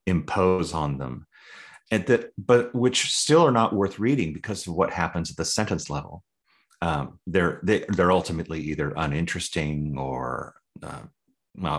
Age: 30-49